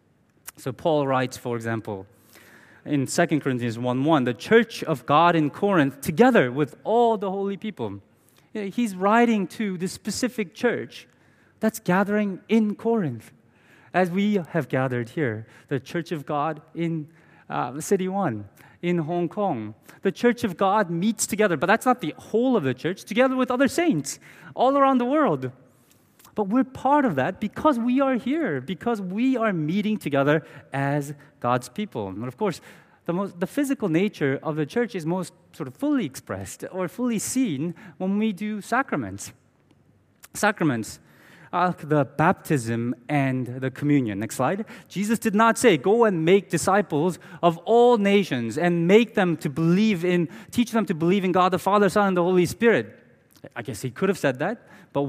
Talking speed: 175 wpm